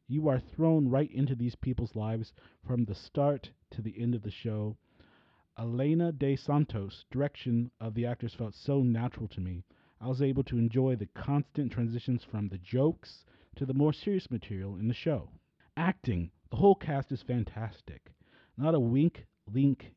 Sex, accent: male, American